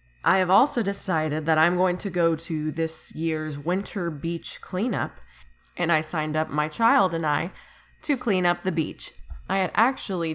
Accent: American